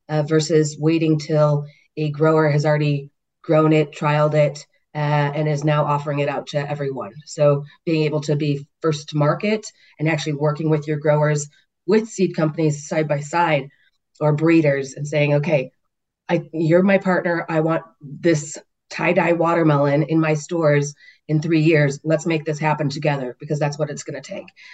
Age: 30-49